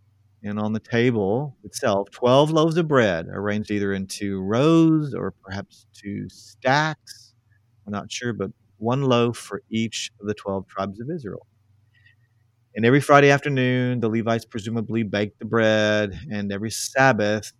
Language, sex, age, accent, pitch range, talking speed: English, male, 40-59, American, 105-120 Hz, 155 wpm